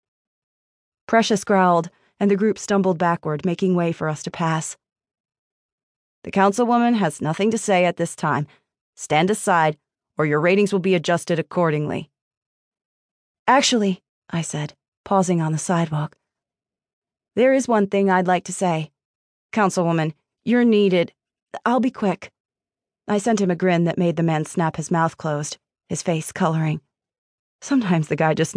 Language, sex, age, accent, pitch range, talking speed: English, female, 30-49, American, 170-215 Hz, 150 wpm